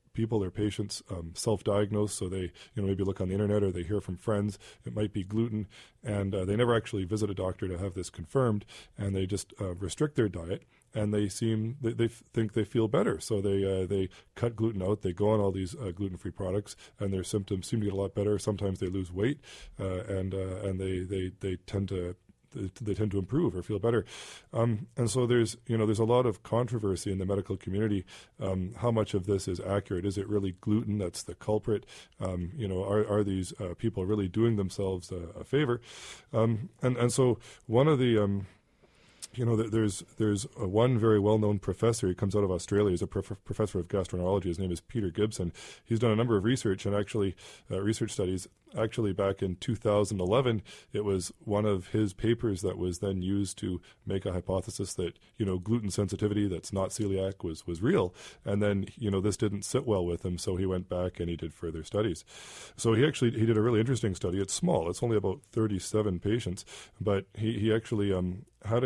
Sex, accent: male, American